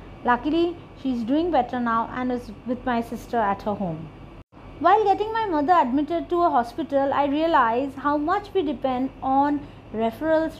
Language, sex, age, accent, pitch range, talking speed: English, female, 30-49, Indian, 250-330 Hz, 165 wpm